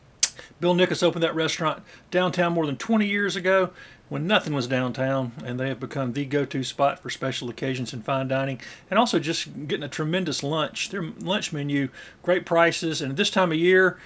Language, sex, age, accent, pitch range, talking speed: English, male, 40-59, American, 130-170 Hz, 195 wpm